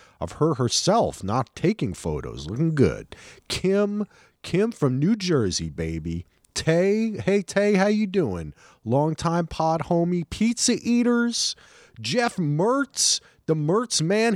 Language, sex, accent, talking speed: English, male, American, 130 wpm